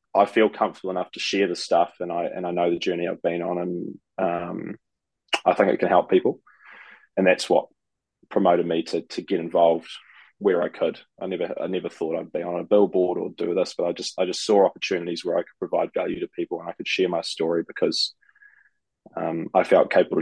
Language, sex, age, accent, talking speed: English, male, 20-39, Australian, 225 wpm